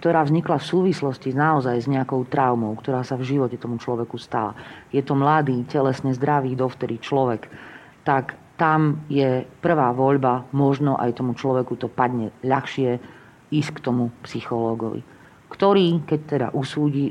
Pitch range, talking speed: 125-145 Hz, 145 wpm